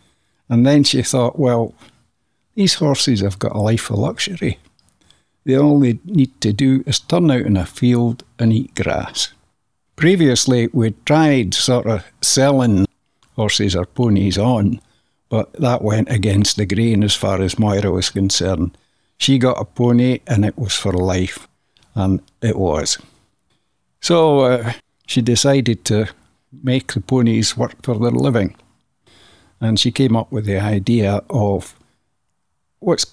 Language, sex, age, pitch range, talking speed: English, male, 60-79, 100-130 Hz, 150 wpm